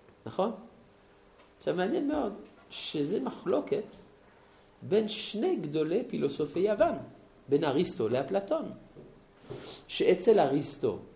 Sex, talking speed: male, 85 wpm